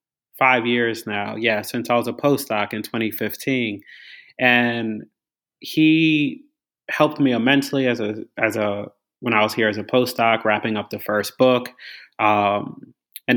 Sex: male